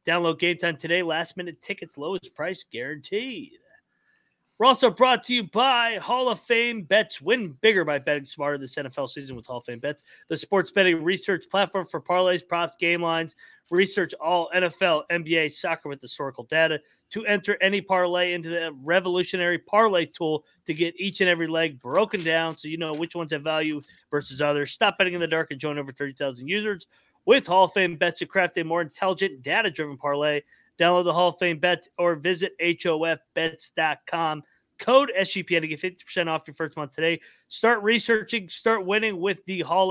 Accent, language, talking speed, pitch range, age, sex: American, English, 185 wpm, 160-200 Hz, 30-49, male